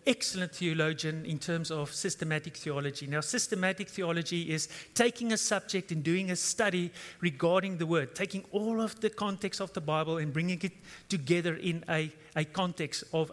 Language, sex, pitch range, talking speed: English, male, 155-210 Hz, 170 wpm